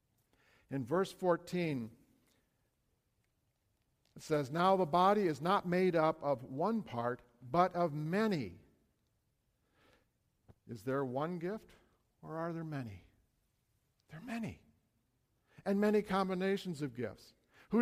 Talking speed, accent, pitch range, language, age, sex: 120 wpm, American, 130-190 Hz, English, 60-79, male